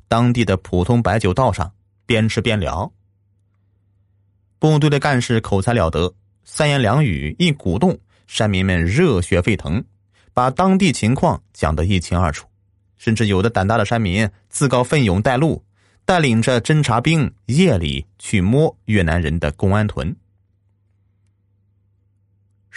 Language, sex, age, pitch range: Chinese, male, 30-49, 100-120 Hz